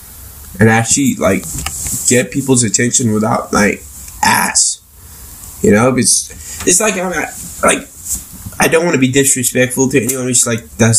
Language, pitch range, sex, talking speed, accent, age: English, 95-125 Hz, male, 155 wpm, American, 10-29